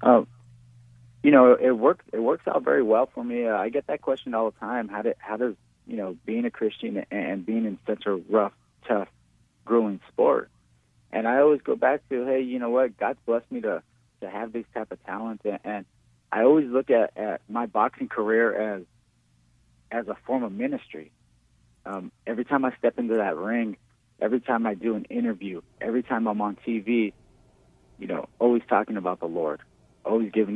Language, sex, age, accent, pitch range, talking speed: English, male, 30-49, American, 100-120 Hz, 200 wpm